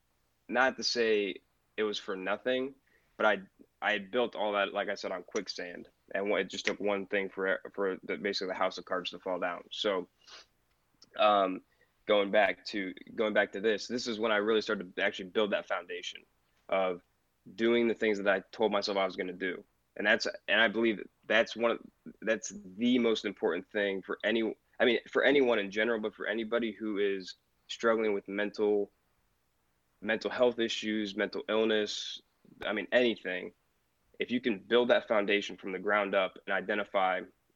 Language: English